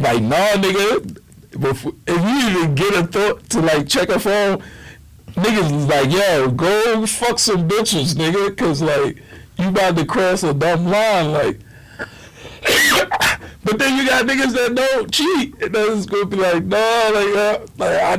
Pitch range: 145-205 Hz